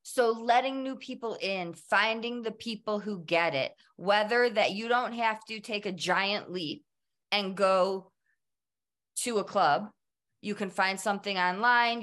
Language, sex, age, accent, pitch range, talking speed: English, female, 20-39, American, 165-215 Hz, 155 wpm